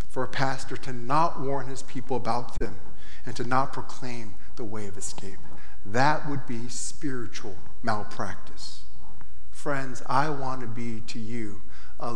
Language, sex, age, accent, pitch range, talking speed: English, male, 50-69, American, 115-185 Hz, 155 wpm